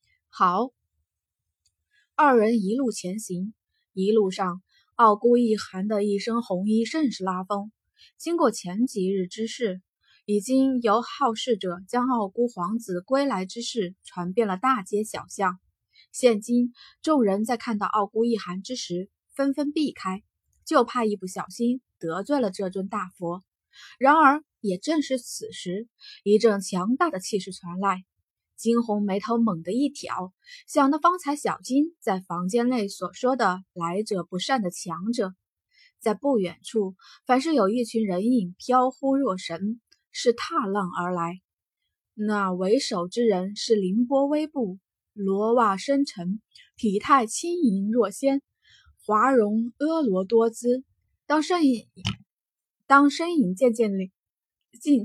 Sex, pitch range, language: female, 190-265 Hz, Chinese